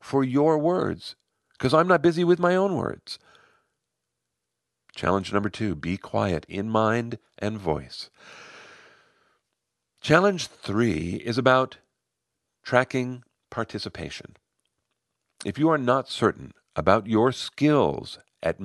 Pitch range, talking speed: 85-125 Hz, 115 wpm